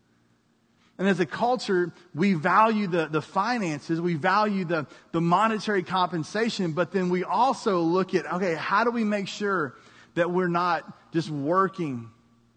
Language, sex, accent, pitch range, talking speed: English, male, American, 140-200 Hz, 155 wpm